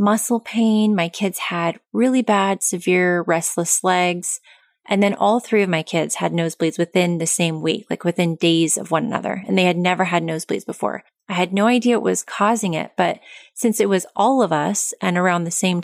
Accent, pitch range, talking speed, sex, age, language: American, 170-210 Hz, 210 wpm, female, 20-39, English